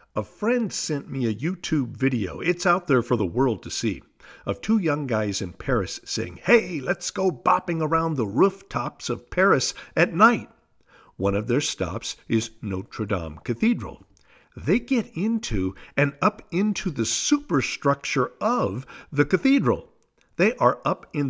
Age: 50-69